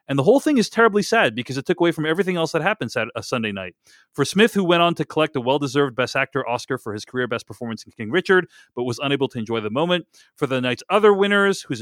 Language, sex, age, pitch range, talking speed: English, male, 40-59, 120-170 Hz, 270 wpm